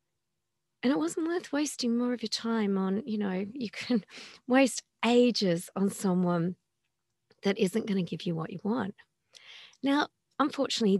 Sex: female